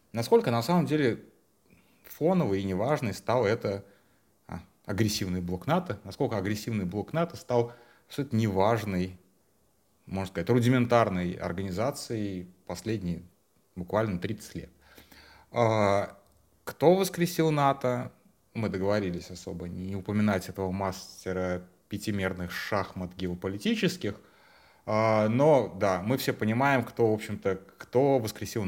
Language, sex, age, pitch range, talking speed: Russian, male, 30-49, 95-120 Hz, 110 wpm